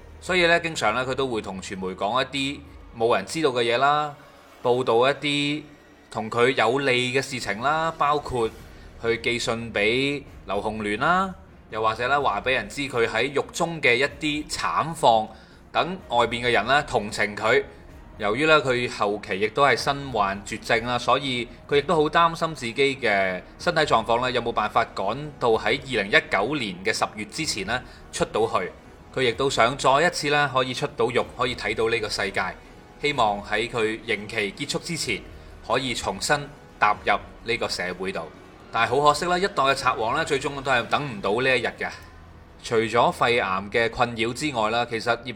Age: 20-39